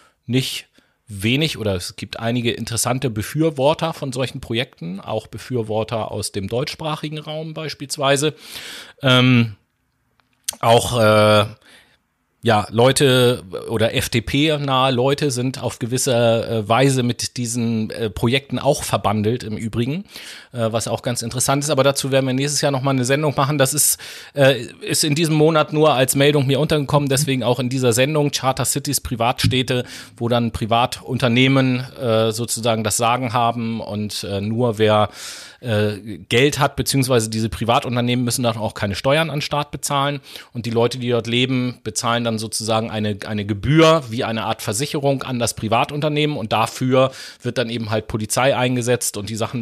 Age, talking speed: 30-49, 150 wpm